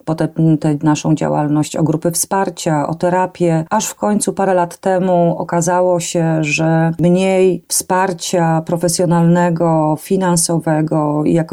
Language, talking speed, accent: Polish, 115 wpm, native